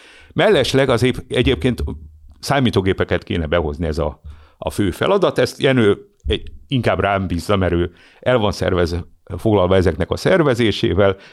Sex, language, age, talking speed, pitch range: male, Hungarian, 50-69, 130 wpm, 80-105 Hz